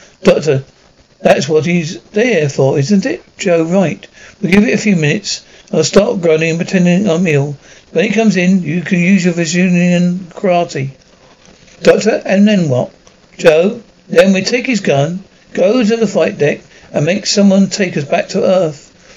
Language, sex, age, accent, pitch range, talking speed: English, male, 60-79, British, 160-205 Hz, 185 wpm